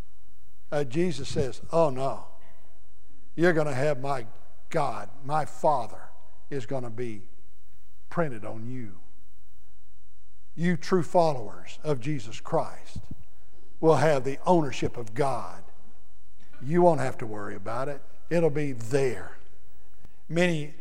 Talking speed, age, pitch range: 125 wpm, 60-79, 105-175 Hz